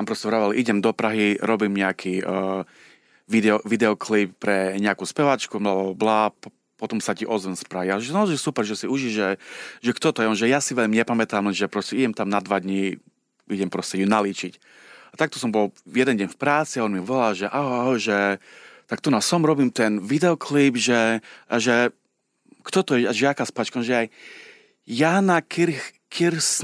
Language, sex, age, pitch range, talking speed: Slovak, male, 30-49, 100-135 Hz, 195 wpm